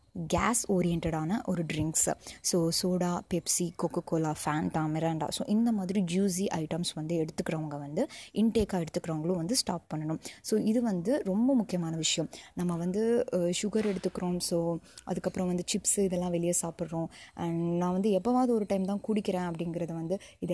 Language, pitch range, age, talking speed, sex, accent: Tamil, 170-205 Hz, 20-39, 150 wpm, female, native